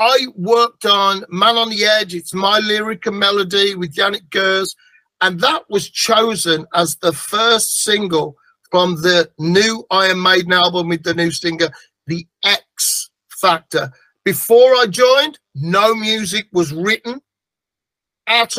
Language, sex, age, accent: English, male, 50-69, British